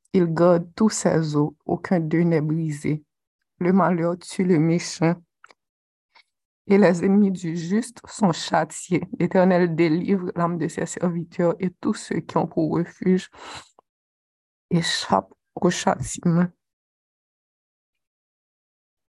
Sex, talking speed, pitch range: female, 115 wpm, 170-210 Hz